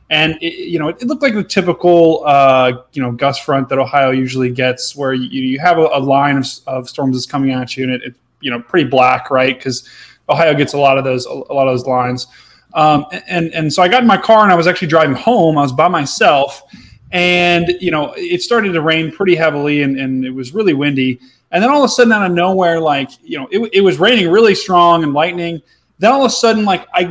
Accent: American